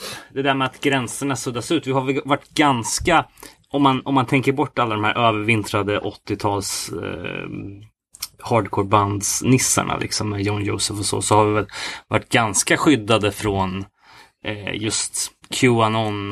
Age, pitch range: 20-39, 100-120 Hz